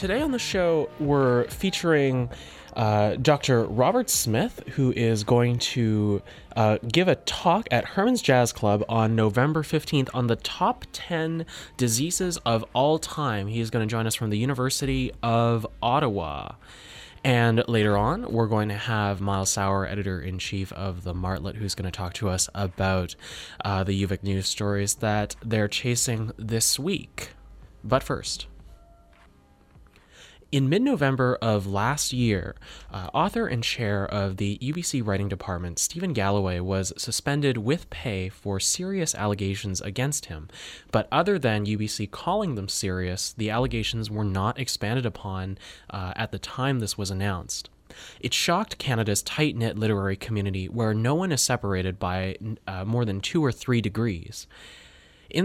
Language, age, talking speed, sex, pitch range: English, 20-39, 155 wpm, male, 100-125 Hz